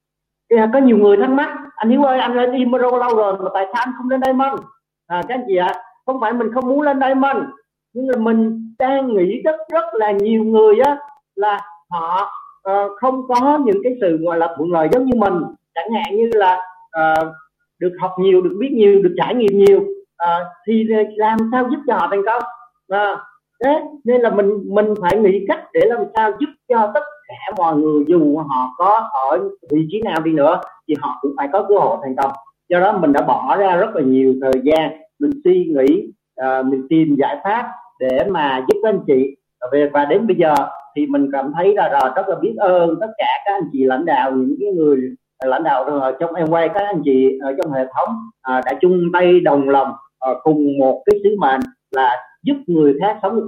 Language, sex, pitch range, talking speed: Vietnamese, male, 160-260 Hz, 225 wpm